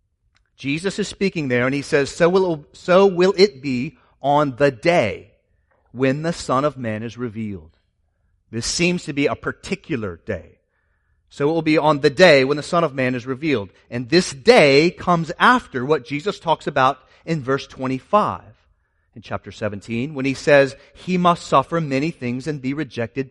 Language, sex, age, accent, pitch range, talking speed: English, male, 30-49, American, 115-170 Hz, 180 wpm